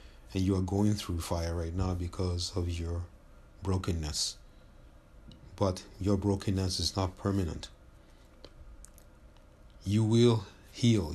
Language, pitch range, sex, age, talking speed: English, 85-100 Hz, male, 50-69, 115 wpm